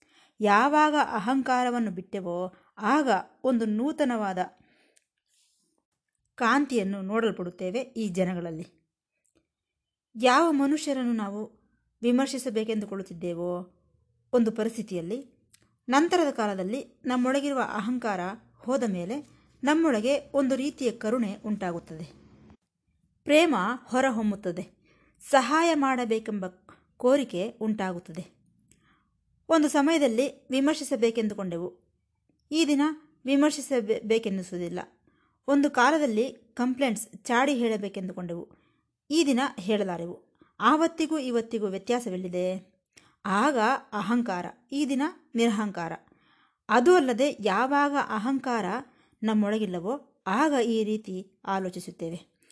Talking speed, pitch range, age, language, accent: 70 wpm, 195-270 Hz, 20-39, Kannada, native